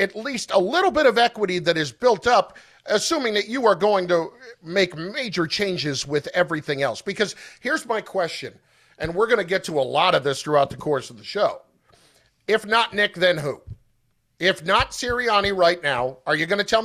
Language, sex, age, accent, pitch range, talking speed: English, male, 50-69, American, 170-230 Hz, 205 wpm